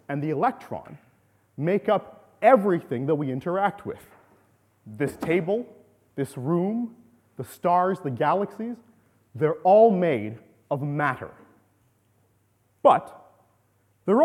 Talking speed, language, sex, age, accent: 105 wpm, English, male, 30-49, American